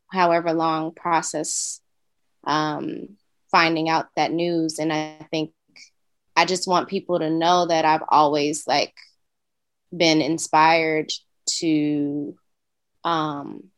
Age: 20-39